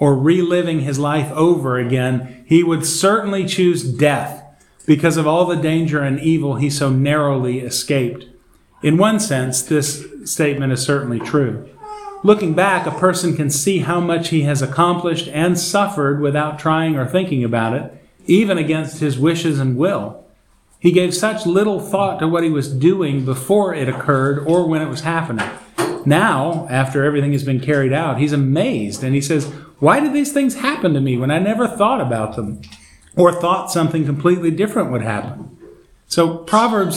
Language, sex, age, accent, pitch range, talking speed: English, male, 40-59, American, 135-175 Hz, 175 wpm